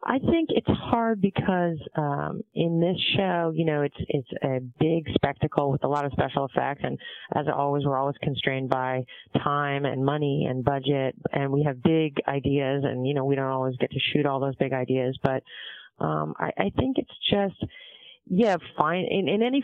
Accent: American